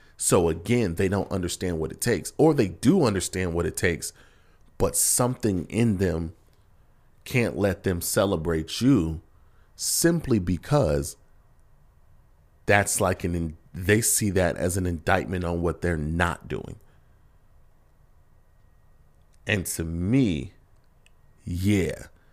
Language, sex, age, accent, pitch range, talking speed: English, male, 40-59, American, 85-110 Hz, 120 wpm